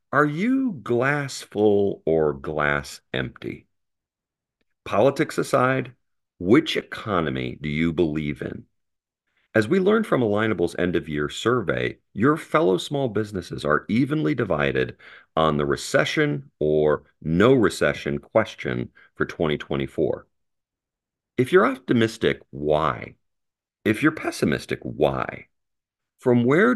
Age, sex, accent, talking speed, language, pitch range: 50-69, male, American, 110 wpm, English, 75-125 Hz